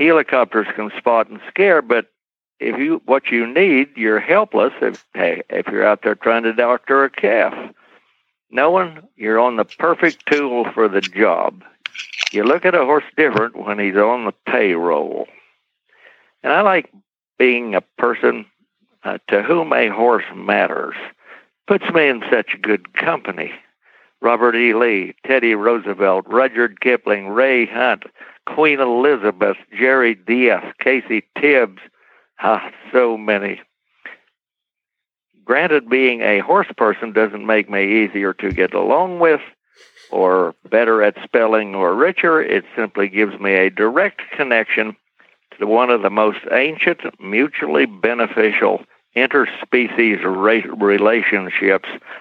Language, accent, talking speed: English, American, 130 wpm